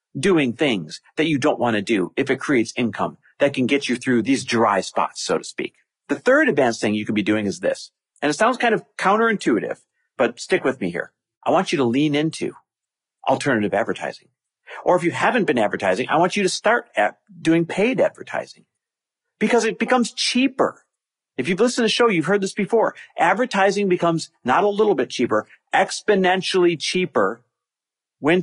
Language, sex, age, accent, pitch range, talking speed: English, male, 40-59, American, 135-210 Hz, 190 wpm